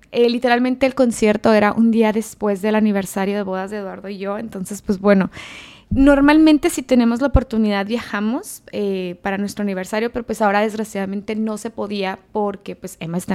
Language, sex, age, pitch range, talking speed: Spanish, female, 20-39, 200-235 Hz, 180 wpm